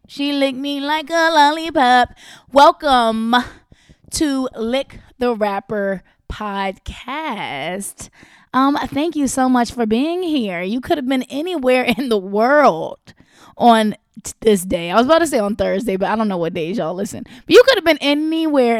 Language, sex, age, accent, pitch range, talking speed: English, female, 20-39, American, 205-270 Hz, 165 wpm